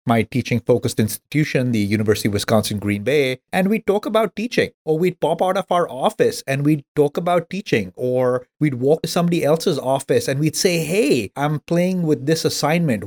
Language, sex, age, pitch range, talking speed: English, male, 30-49, 125-180 Hz, 190 wpm